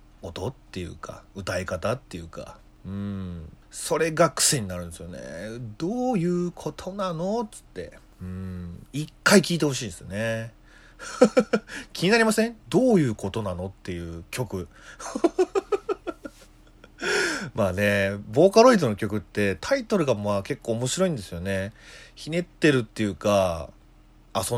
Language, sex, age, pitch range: Japanese, male, 30-49, 95-145 Hz